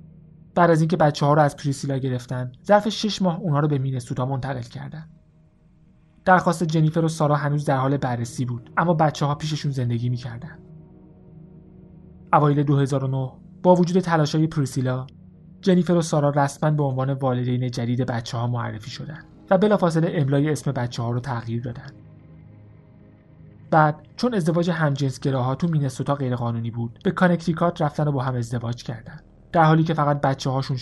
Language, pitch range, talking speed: Persian, 130-165 Hz, 155 wpm